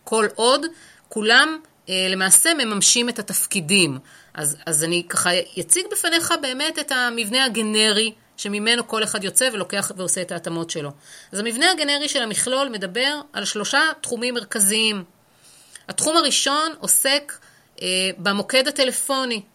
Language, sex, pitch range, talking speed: Hebrew, female, 180-255 Hz, 125 wpm